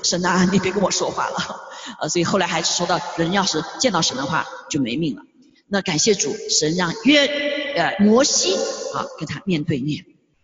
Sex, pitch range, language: female, 180-270 Hz, Chinese